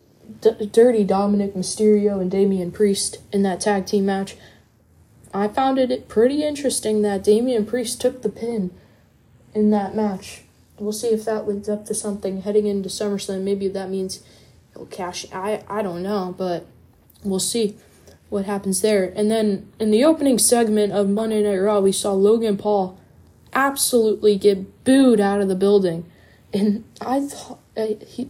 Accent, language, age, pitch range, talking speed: American, English, 10-29, 195-215 Hz, 160 wpm